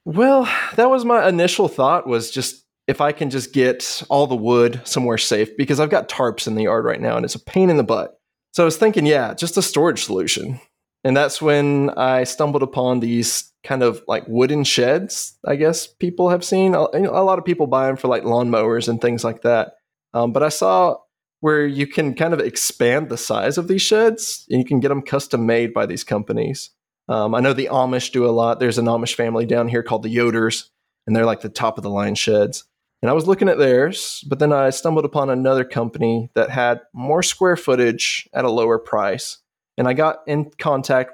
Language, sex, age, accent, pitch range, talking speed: English, male, 20-39, American, 115-155 Hz, 220 wpm